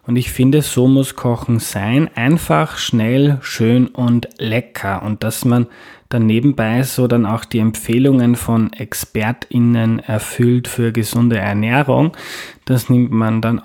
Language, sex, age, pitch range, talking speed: German, male, 20-39, 110-130 Hz, 140 wpm